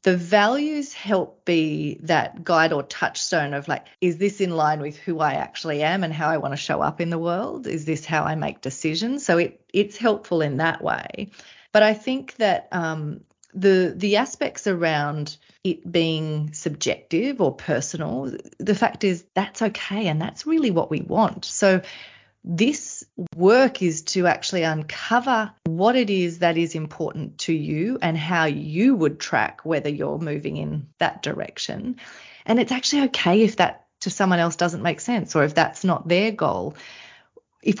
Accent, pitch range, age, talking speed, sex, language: Australian, 160-210 Hz, 30-49, 180 wpm, female, English